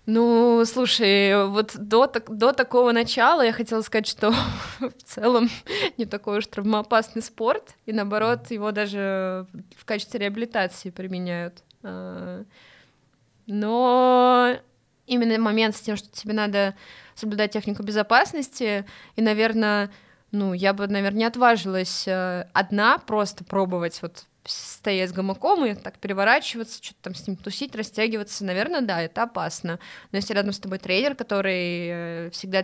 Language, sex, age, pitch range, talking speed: Russian, female, 20-39, 195-230 Hz, 135 wpm